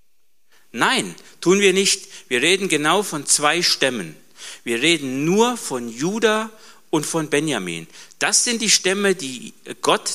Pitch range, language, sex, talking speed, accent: 130-170 Hz, German, male, 140 wpm, German